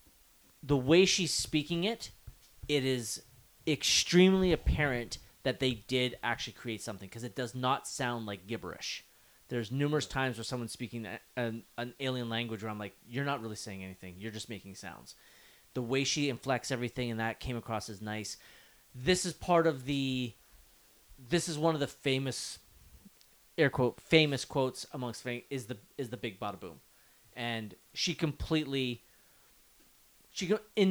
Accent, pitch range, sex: American, 110-140 Hz, male